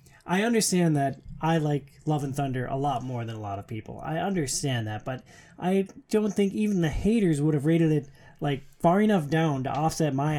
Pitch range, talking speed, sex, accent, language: 140-190 Hz, 215 wpm, male, American, English